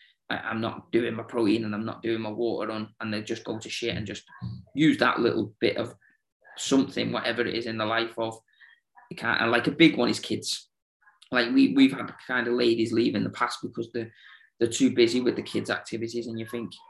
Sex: male